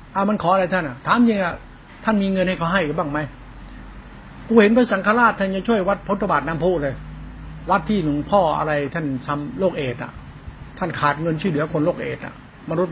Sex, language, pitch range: male, Thai, 165-210 Hz